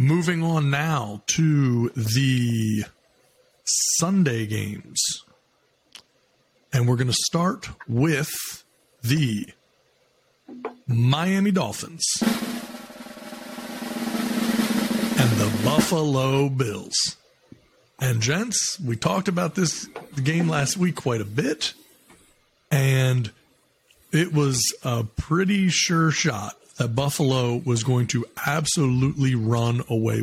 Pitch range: 125-165 Hz